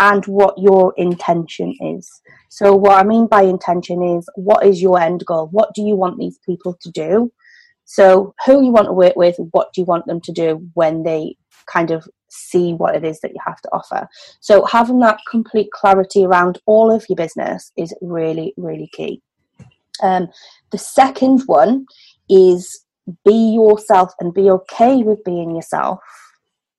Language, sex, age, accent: English, female, 30-49, British